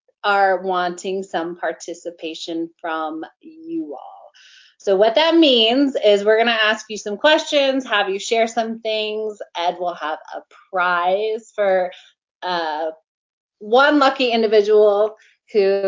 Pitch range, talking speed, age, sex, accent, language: 170-220 Hz, 130 wpm, 20-39, female, American, English